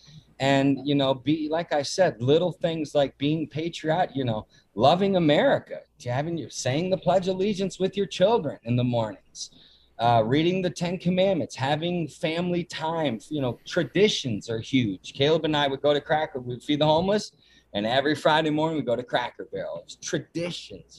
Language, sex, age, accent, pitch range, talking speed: English, male, 30-49, American, 120-155 Hz, 180 wpm